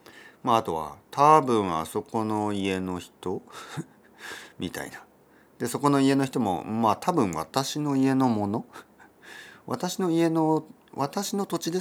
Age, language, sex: 40-59, Japanese, male